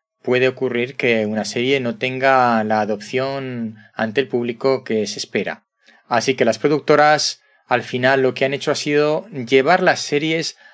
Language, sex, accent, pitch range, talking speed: Spanish, male, Spanish, 115-140 Hz, 170 wpm